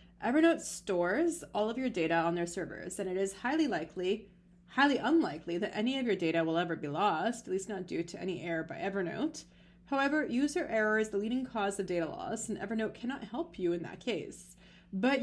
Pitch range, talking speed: 180-240 Hz, 210 wpm